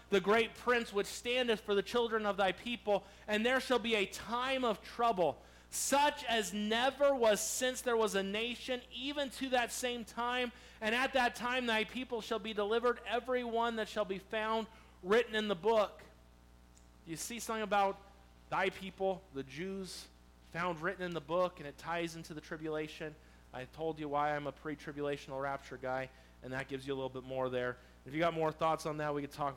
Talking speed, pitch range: 200 wpm, 130-215 Hz